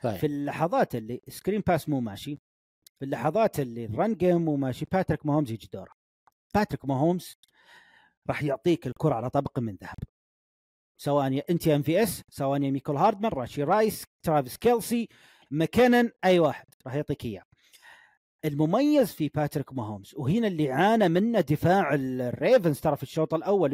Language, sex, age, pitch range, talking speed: Arabic, male, 40-59, 145-215 Hz, 150 wpm